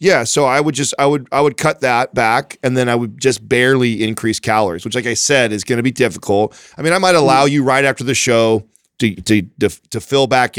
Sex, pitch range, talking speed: male, 105-125 Hz, 255 wpm